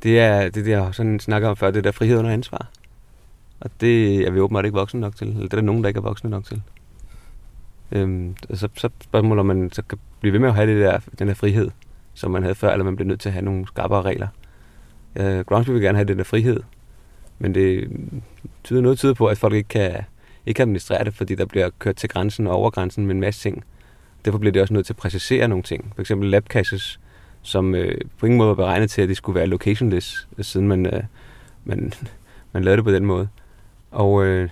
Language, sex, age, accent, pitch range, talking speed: Danish, male, 30-49, native, 95-115 Hz, 240 wpm